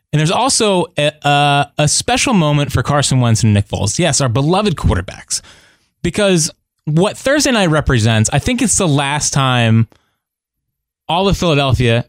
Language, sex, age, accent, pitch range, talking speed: English, male, 20-39, American, 115-155 Hz, 155 wpm